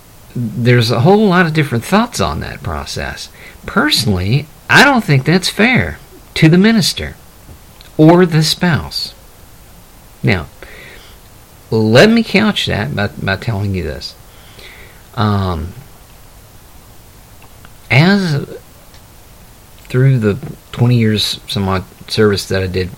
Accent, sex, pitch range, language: American, male, 100-125 Hz, English